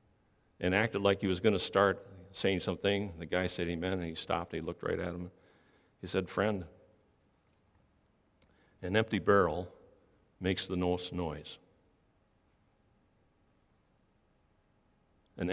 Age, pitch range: 60-79, 90-105 Hz